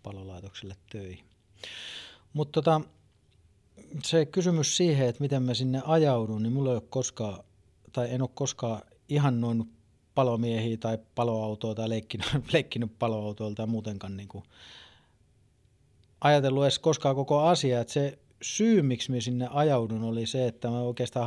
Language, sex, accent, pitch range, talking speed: Finnish, male, native, 105-130 Hz, 140 wpm